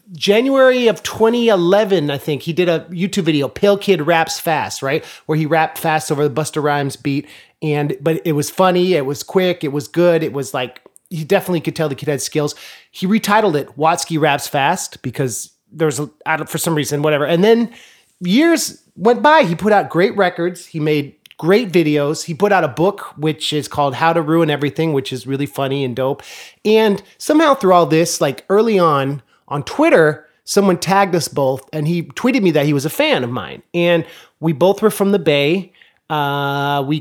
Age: 30-49